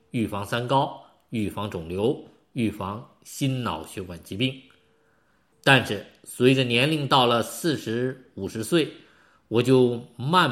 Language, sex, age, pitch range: Chinese, male, 50-69, 105-150 Hz